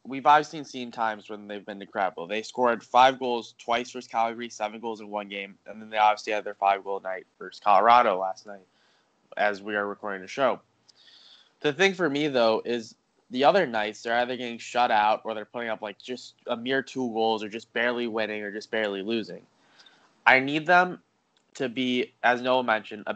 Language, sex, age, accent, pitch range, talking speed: English, male, 20-39, American, 105-130 Hz, 205 wpm